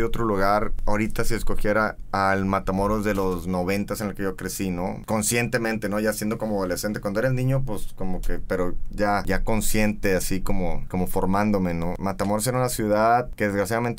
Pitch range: 100-120 Hz